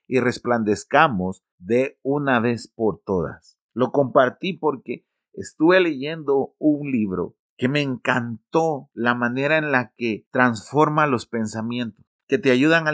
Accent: Mexican